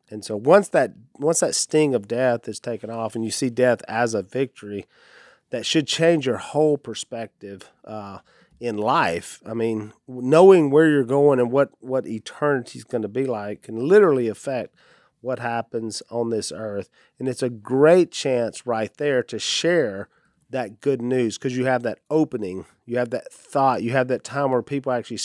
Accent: American